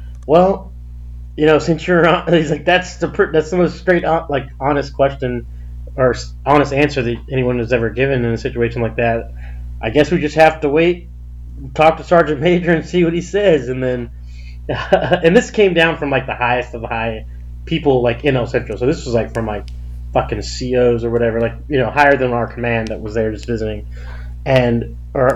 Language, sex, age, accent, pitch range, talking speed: English, male, 30-49, American, 115-150 Hz, 210 wpm